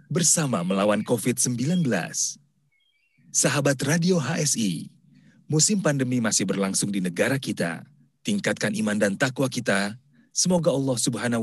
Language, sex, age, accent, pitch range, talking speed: Indonesian, male, 30-49, native, 120-165 Hz, 110 wpm